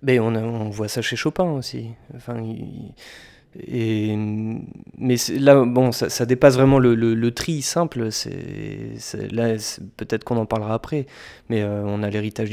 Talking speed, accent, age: 185 wpm, French, 20-39